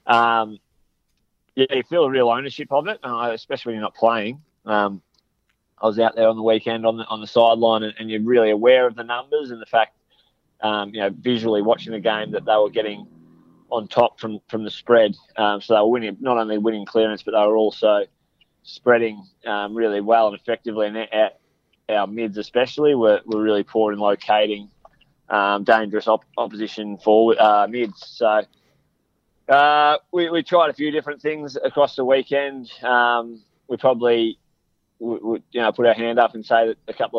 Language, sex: English, male